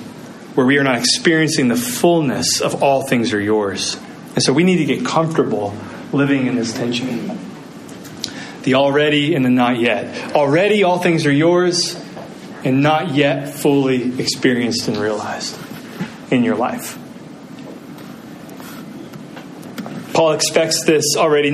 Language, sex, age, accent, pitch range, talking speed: English, male, 30-49, American, 135-170 Hz, 130 wpm